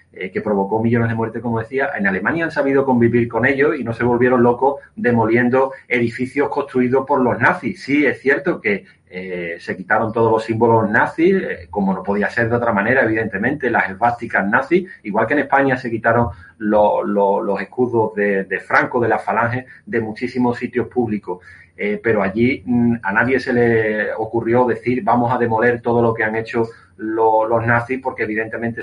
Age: 30-49